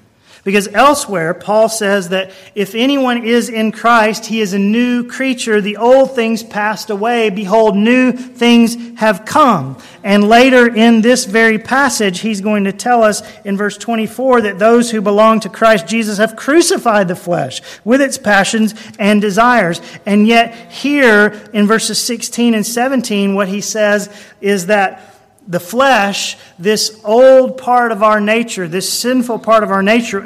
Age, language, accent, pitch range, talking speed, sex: 40-59, English, American, 180-225 Hz, 165 wpm, male